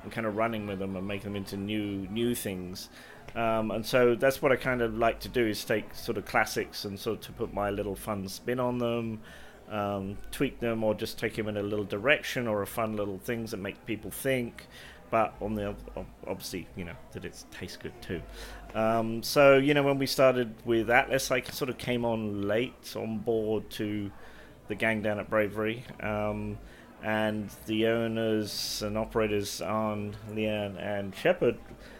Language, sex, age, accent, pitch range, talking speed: English, male, 30-49, British, 105-120 Hz, 195 wpm